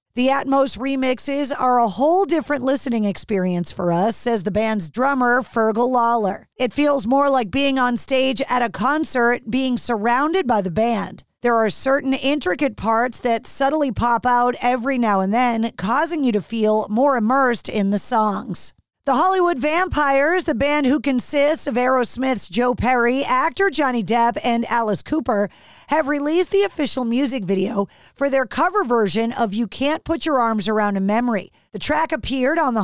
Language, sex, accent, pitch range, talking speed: English, female, American, 225-280 Hz, 175 wpm